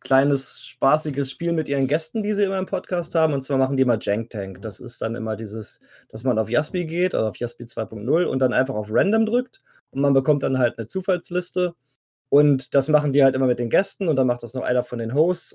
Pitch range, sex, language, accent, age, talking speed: 125-165 Hz, male, German, German, 20-39, 245 wpm